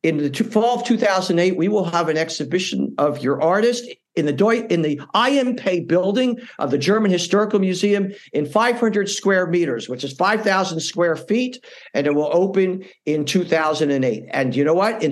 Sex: male